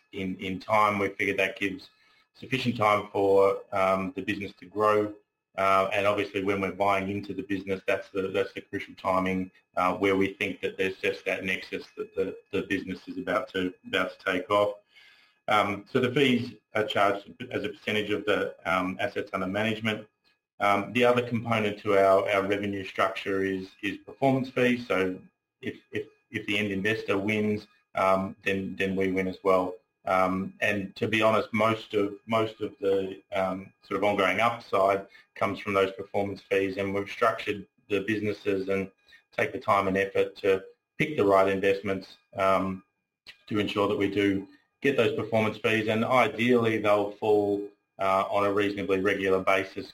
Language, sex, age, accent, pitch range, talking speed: English, male, 30-49, Australian, 95-105 Hz, 180 wpm